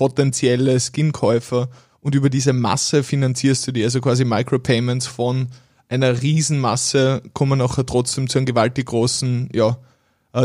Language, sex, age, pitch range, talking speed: German, male, 20-39, 125-135 Hz, 130 wpm